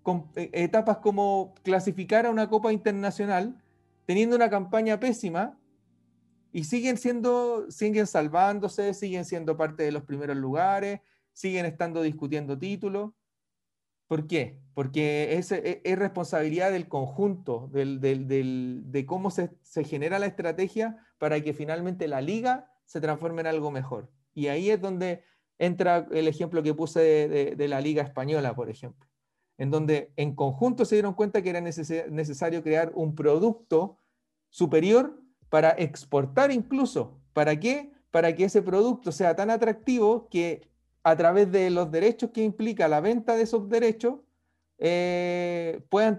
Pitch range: 150-205 Hz